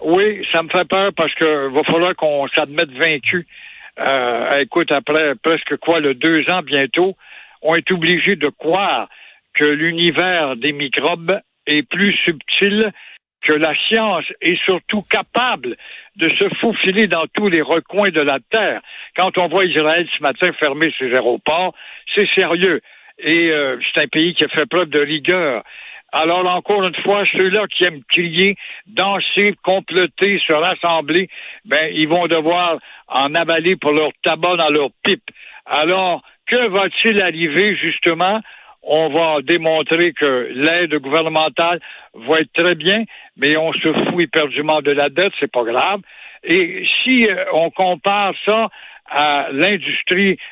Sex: male